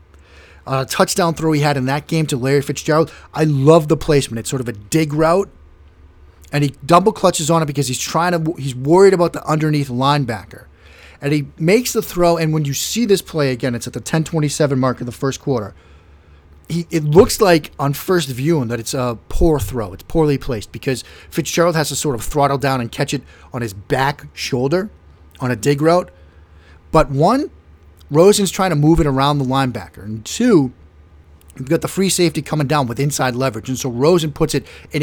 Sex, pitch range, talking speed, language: male, 120-160 Hz, 205 wpm, English